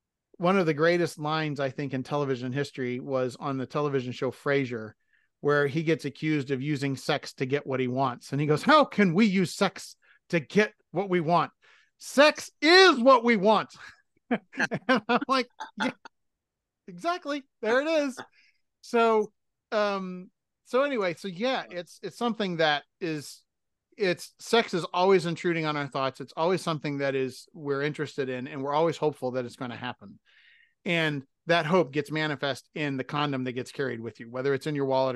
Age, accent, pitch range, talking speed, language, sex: 40-59, American, 135-185 Hz, 185 wpm, English, male